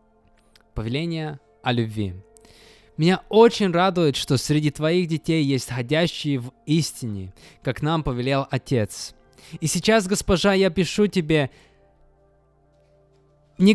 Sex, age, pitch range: male, 20-39, 125-180 Hz